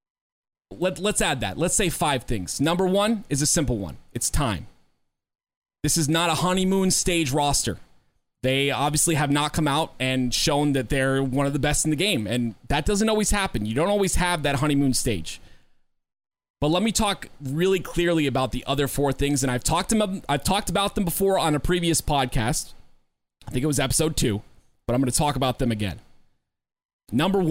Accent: American